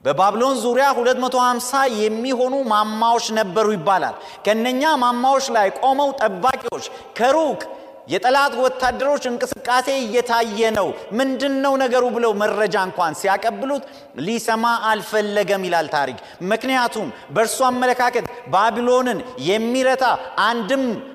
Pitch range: 190-260 Hz